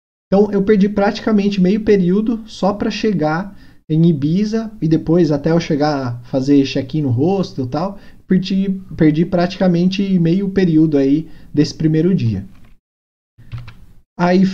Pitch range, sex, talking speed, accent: 140-195 Hz, male, 130 wpm, Brazilian